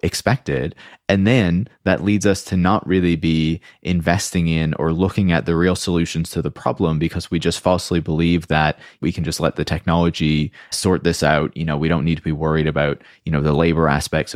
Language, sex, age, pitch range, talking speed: English, male, 20-39, 75-85 Hz, 210 wpm